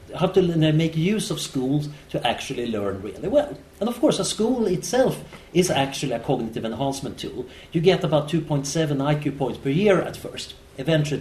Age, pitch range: 40-59, 125-170 Hz